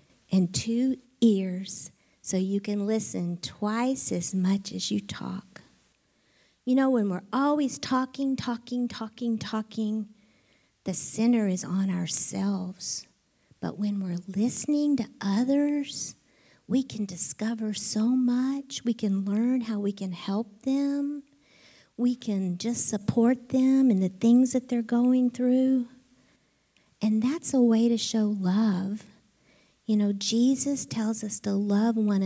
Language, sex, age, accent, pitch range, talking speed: English, female, 50-69, American, 185-245 Hz, 135 wpm